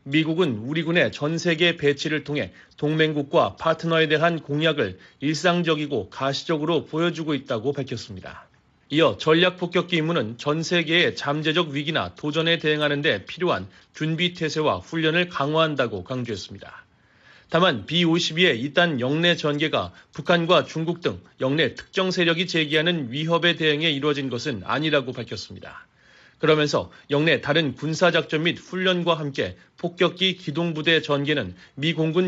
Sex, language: male, Korean